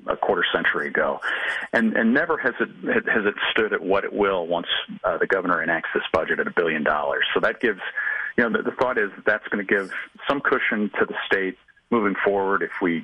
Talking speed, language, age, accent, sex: 230 wpm, English, 40-59, American, male